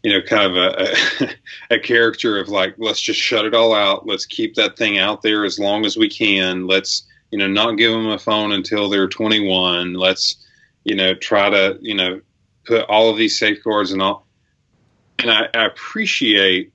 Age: 30-49